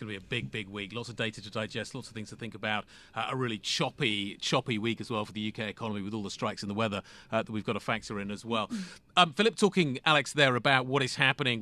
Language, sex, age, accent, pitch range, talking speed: English, male, 40-59, British, 110-130 Hz, 285 wpm